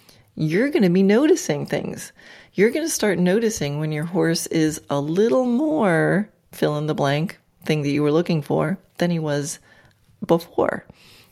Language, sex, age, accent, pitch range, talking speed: English, female, 30-49, American, 155-195 Hz, 170 wpm